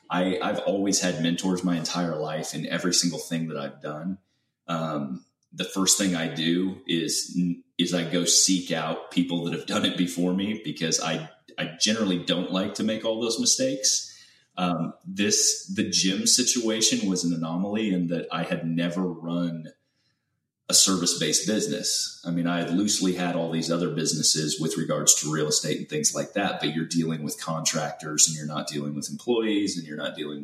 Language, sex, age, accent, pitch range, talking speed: English, male, 30-49, American, 80-95 Hz, 190 wpm